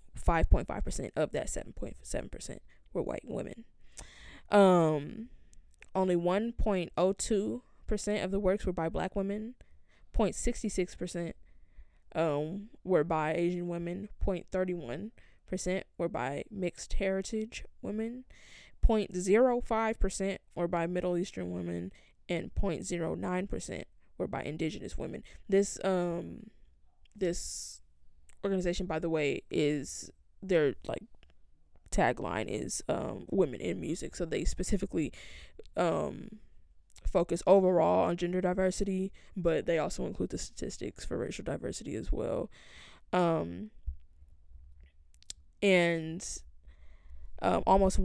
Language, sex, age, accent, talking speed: English, female, 10-29, American, 110 wpm